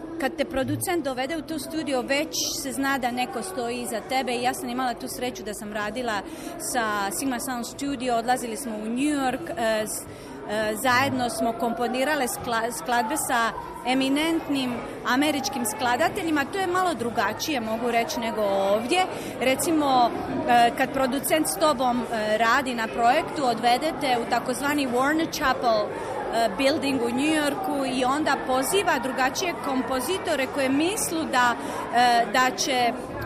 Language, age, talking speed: Croatian, 30-49, 135 wpm